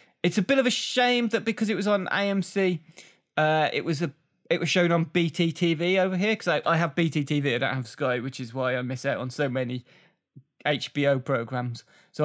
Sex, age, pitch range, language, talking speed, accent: male, 20-39, 130-180 Hz, English, 215 wpm, British